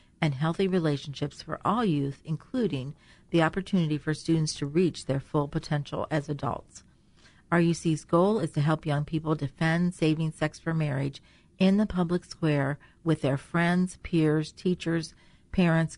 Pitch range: 145-170 Hz